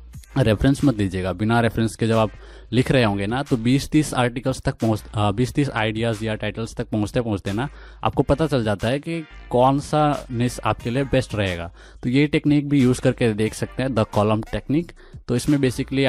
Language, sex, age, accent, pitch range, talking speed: Hindi, male, 20-39, native, 105-125 Hz, 195 wpm